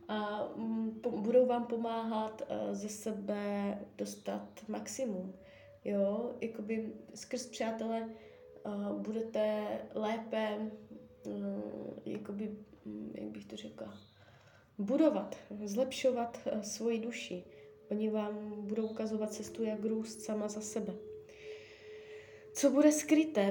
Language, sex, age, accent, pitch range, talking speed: Czech, female, 20-39, native, 190-230 Hz, 75 wpm